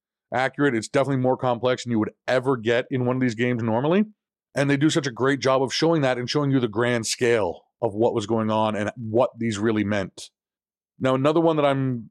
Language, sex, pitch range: English, male, 110-135 Hz